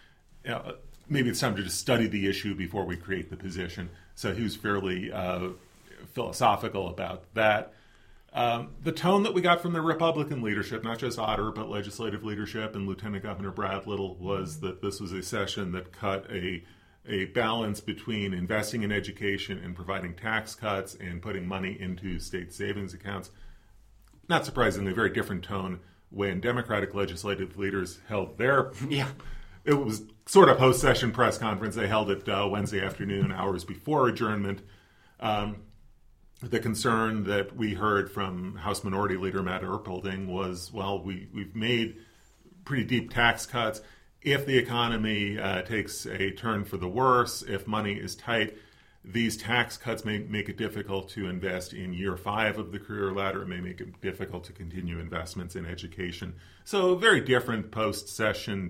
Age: 40-59